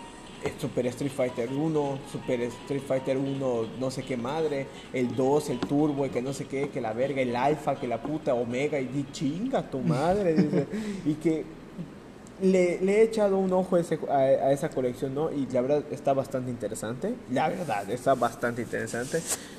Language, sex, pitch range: Spanish, male, 130-175 Hz